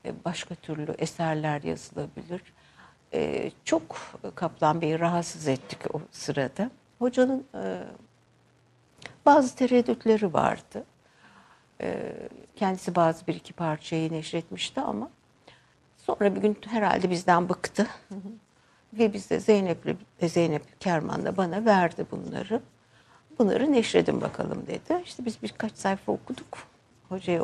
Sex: female